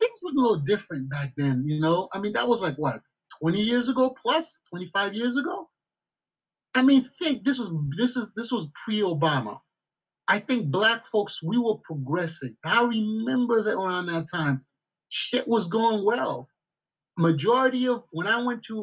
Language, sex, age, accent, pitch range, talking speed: English, male, 30-49, American, 170-240 Hz, 175 wpm